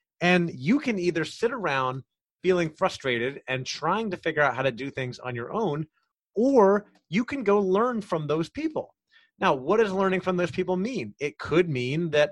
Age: 30-49